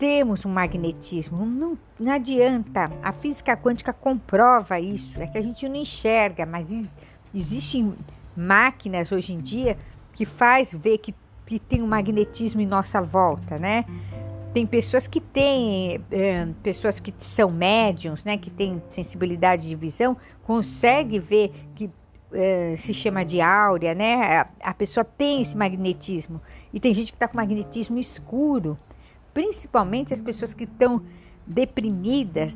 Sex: female